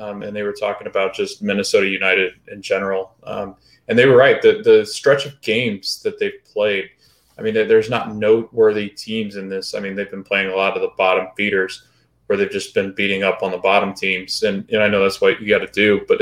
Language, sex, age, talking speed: English, male, 20-39, 240 wpm